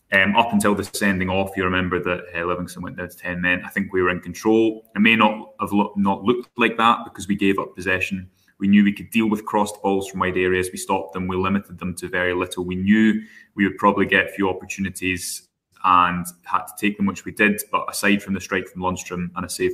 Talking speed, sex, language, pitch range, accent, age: 250 wpm, male, English, 90-100 Hz, British, 20-39